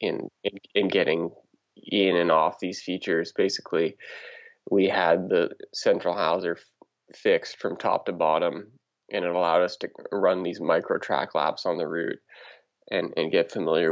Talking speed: 165 wpm